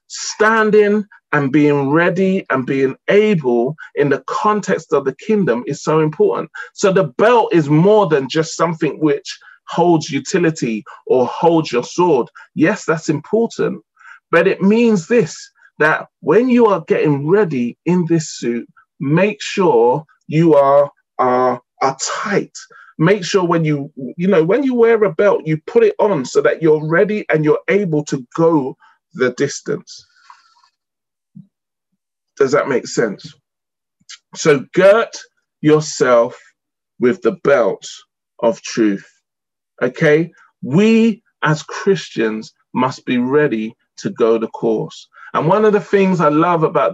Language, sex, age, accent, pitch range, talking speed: English, male, 30-49, British, 145-210 Hz, 140 wpm